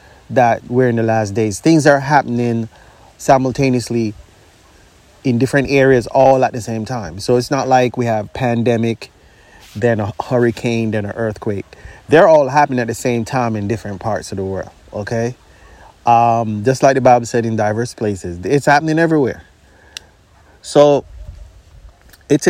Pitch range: 105-130 Hz